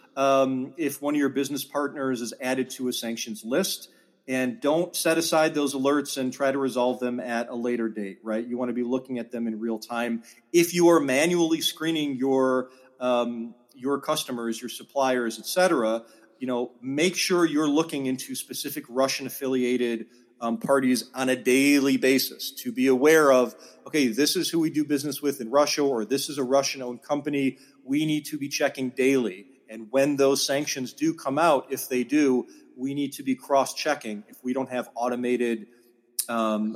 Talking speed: 190 wpm